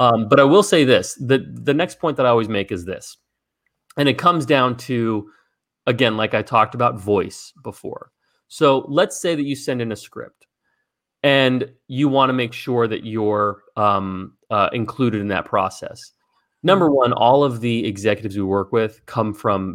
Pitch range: 100-130 Hz